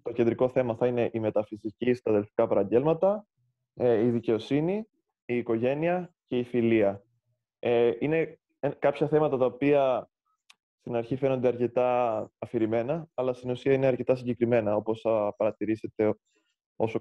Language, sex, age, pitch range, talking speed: Greek, male, 20-39, 115-155 Hz, 125 wpm